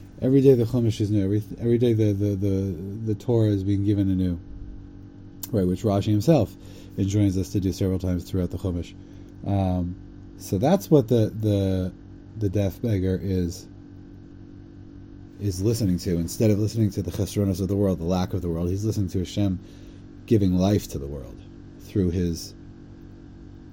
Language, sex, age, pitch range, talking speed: English, male, 30-49, 95-110 Hz, 170 wpm